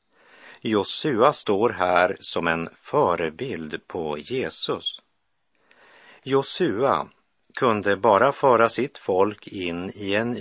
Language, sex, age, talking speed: Swedish, male, 50-69, 100 wpm